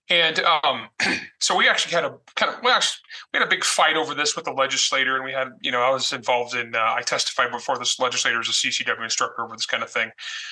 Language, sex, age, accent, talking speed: English, male, 30-49, American, 255 wpm